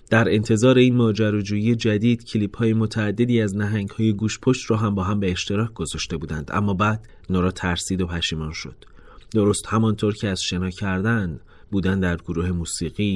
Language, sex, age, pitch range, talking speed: Persian, male, 30-49, 85-110 Hz, 165 wpm